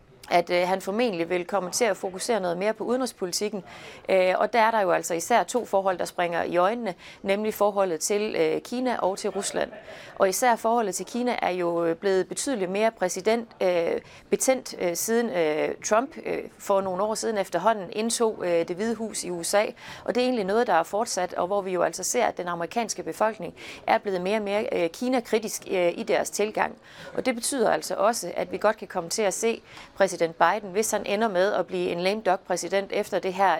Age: 30-49